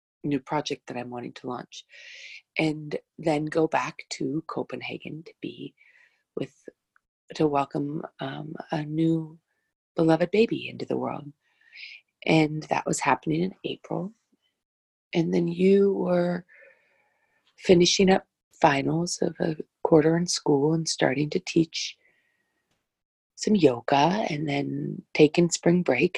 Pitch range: 140-175 Hz